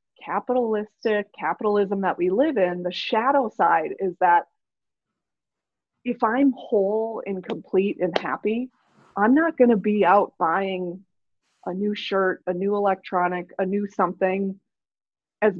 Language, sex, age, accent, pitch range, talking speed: English, female, 20-39, American, 190-245 Hz, 135 wpm